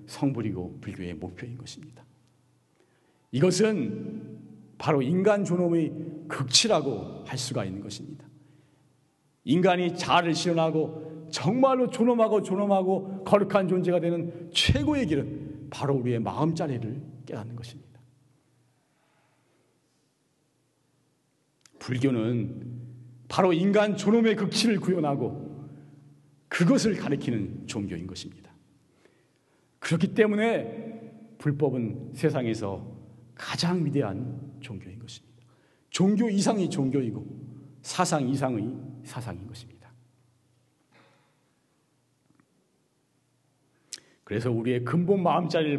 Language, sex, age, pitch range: Korean, male, 40-59, 125-180 Hz